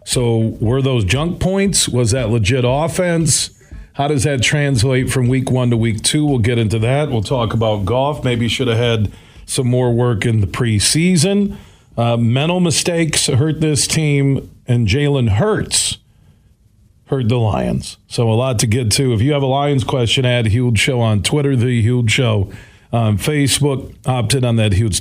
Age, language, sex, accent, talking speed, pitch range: 40-59, English, male, American, 185 wpm, 110-135 Hz